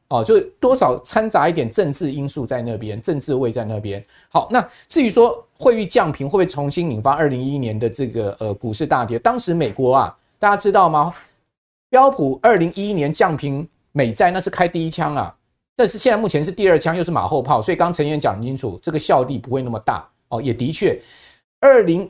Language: Chinese